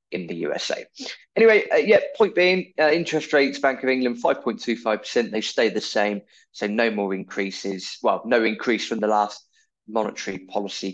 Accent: British